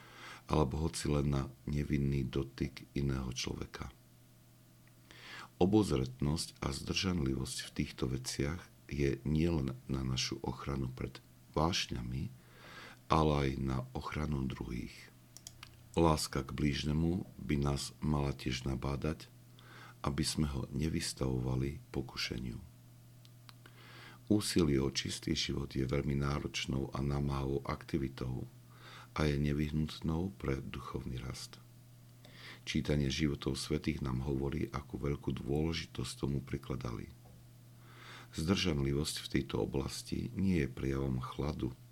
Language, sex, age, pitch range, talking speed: Slovak, male, 50-69, 65-85 Hz, 105 wpm